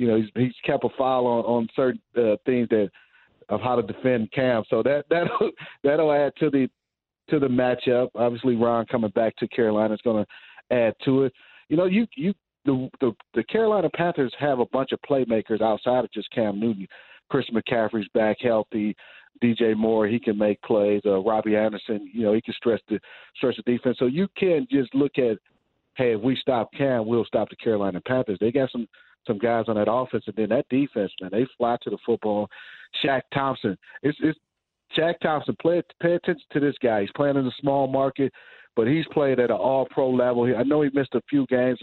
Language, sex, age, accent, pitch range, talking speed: English, male, 40-59, American, 110-135 Hz, 210 wpm